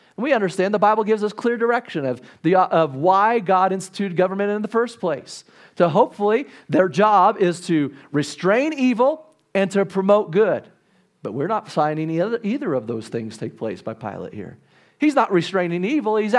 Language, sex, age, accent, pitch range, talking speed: English, male, 40-59, American, 125-185 Hz, 180 wpm